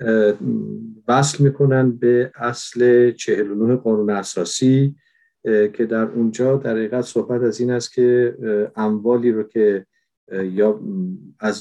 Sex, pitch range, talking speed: male, 105-125 Hz, 110 wpm